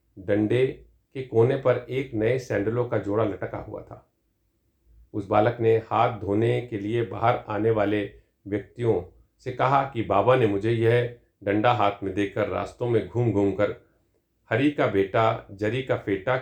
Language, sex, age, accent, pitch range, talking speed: Hindi, male, 50-69, native, 100-130 Hz, 165 wpm